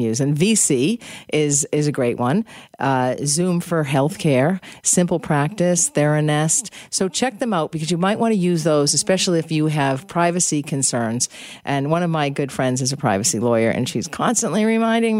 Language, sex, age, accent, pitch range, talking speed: English, female, 50-69, American, 140-195 Hz, 180 wpm